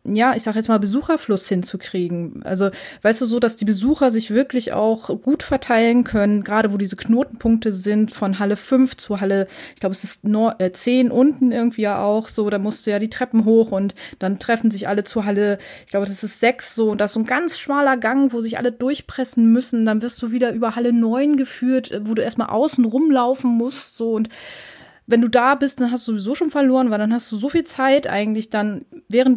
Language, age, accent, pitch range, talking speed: German, 20-39, German, 195-245 Hz, 225 wpm